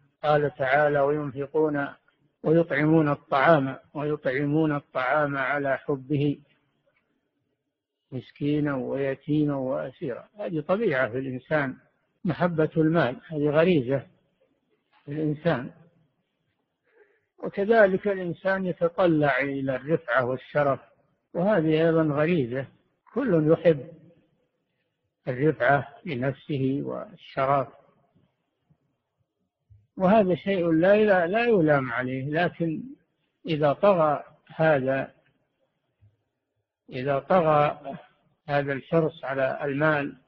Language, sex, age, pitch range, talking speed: Arabic, male, 60-79, 140-165 Hz, 75 wpm